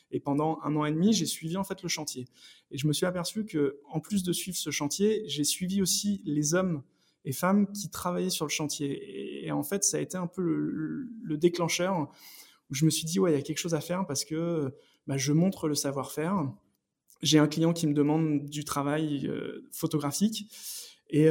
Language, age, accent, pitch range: French, 20-39, French, 140-165 Hz